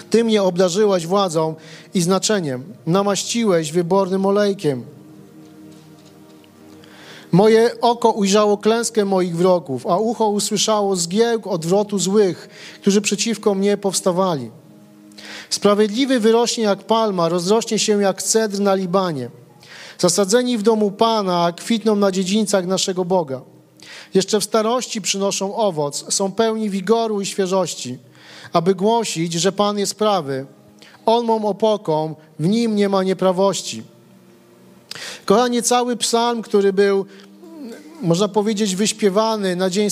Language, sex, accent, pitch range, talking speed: Polish, male, native, 180-215 Hz, 115 wpm